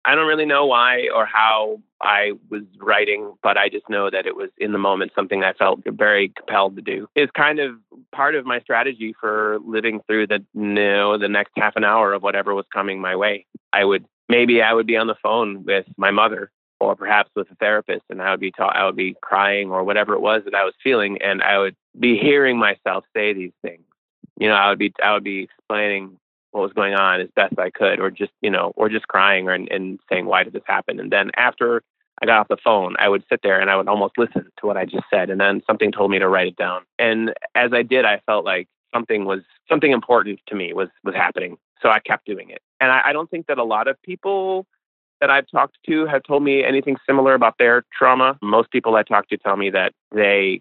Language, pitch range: English, 100-130 Hz